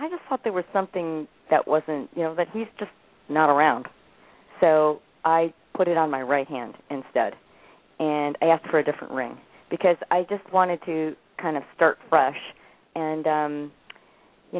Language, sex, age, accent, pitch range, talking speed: English, female, 40-59, American, 155-190 Hz, 175 wpm